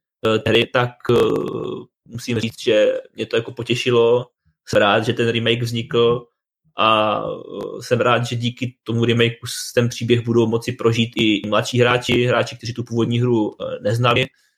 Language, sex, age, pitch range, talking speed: Czech, male, 20-39, 115-130 Hz, 150 wpm